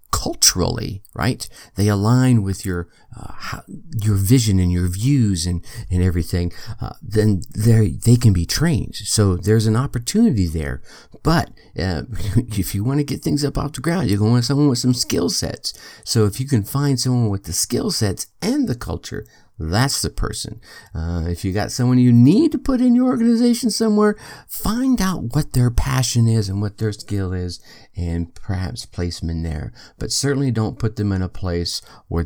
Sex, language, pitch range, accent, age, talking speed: male, English, 95-125 Hz, American, 50-69, 195 wpm